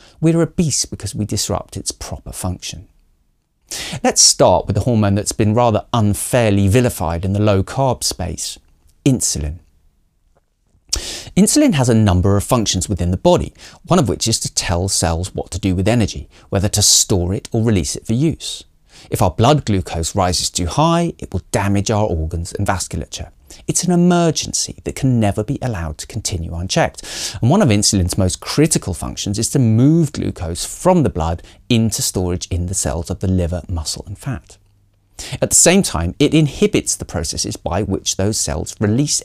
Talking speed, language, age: 180 wpm, English, 40-59